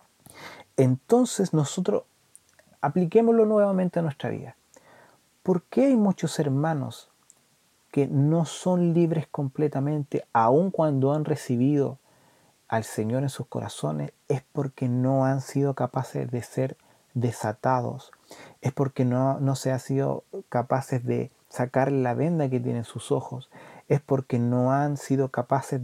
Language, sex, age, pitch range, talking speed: Spanish, male, 30-49, 120-145 Hz, 130 wpm